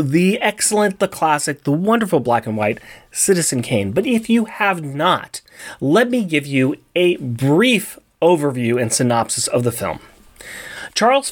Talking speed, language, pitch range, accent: 155 wpm, English, 130-200 Hz, American